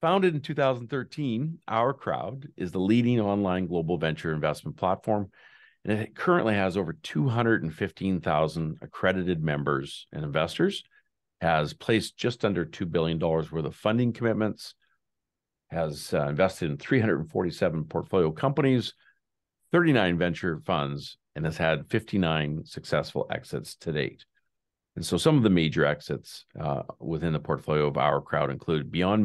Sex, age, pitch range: male, 50-69, 80-110 Hz